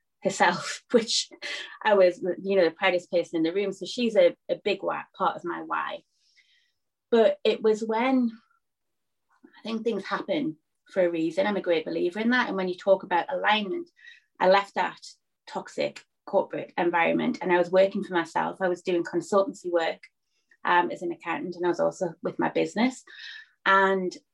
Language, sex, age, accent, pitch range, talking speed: English, female, 20-39, British, 180-250 Hz, 180 wpm